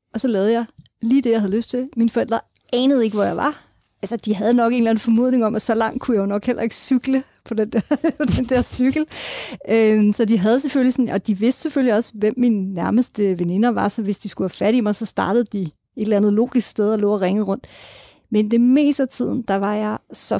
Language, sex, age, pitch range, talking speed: Danish, female, 30-49, 210-240 Hz, 255 wpm